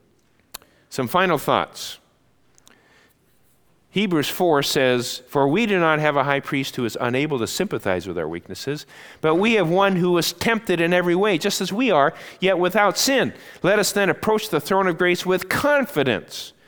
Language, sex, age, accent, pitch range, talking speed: English, male, 50-69, American, 120-175 Hz, 175 wpm